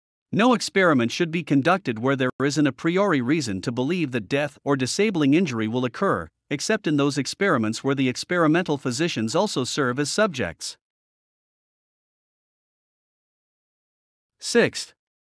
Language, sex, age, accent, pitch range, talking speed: English, male, 50-69, American, 125-175 Hz, 130 wpm